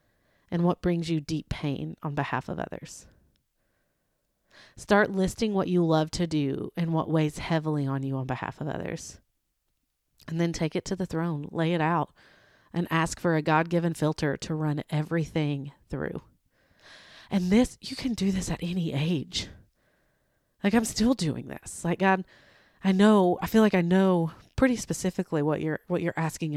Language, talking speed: English, 175 wpm